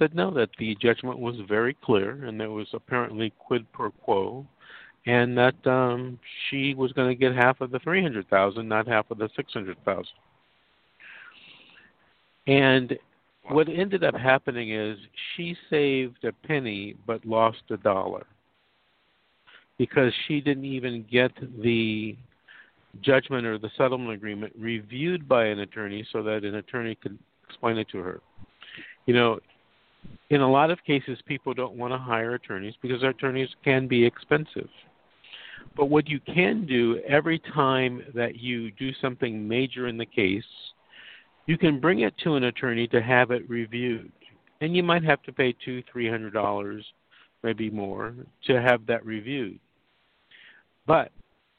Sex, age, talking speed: male, 50-69, 155 wpm